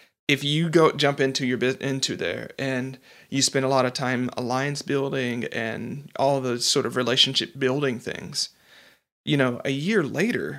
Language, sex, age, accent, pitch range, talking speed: English, male, 40-59, American, 125-140 Hz, 170 wpm